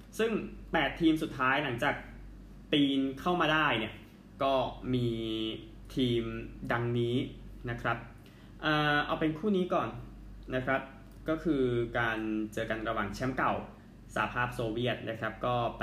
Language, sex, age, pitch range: Thai, male, 20-39, 110-135 Hz